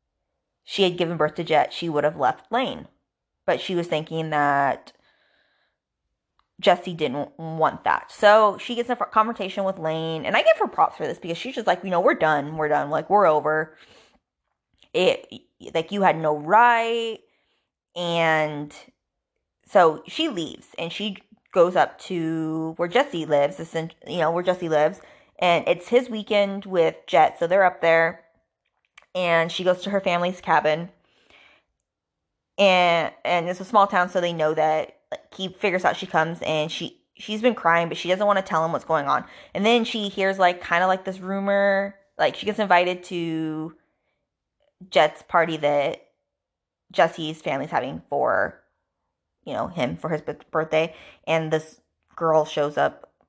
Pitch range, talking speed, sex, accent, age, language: 160-200 Hz, 170 wpm, female, American, 20-39, English